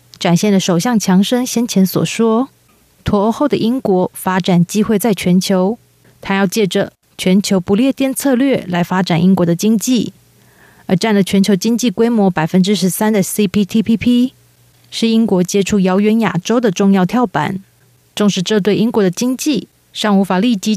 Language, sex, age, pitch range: Chinese, female, 30-49, 185-220 Hz